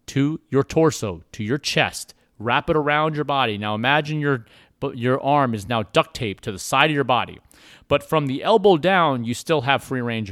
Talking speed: 210 wpm